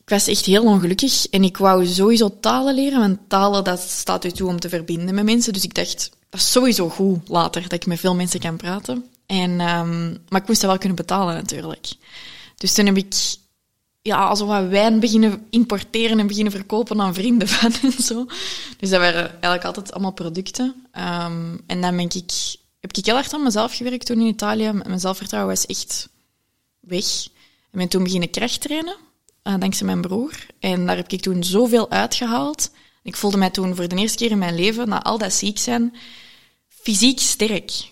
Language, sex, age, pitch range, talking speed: Dutch, female, 20-39, 185-230 Hz, 200 wpm